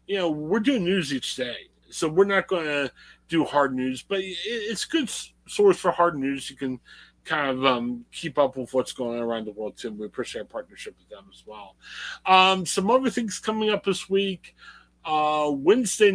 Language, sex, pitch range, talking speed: English, male, 125-190 Hz, 210 wpm